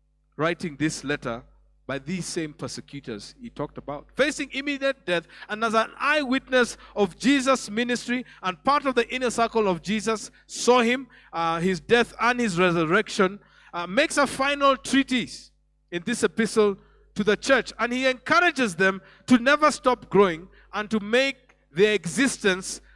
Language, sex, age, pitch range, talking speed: English, male, 50-69, 180-255 Hz, 155 wpm